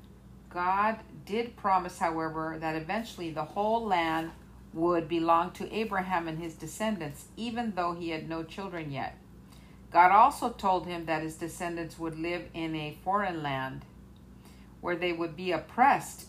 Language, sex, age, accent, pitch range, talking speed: English, female, 50-69, American, 160-190 Hz, 150 wpm